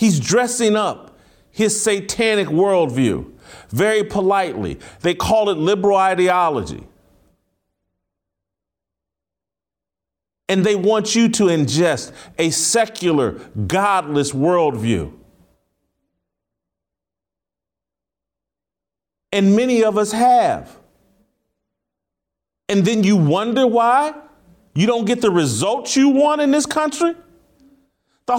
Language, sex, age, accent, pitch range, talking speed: English, male, 40-59, American, 170-240 Hz, 95 wpm